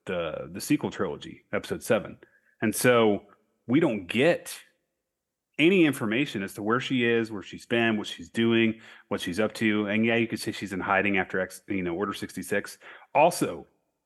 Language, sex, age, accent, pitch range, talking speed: English, male, 30-49, American, 105-125 Hz, 185 wpm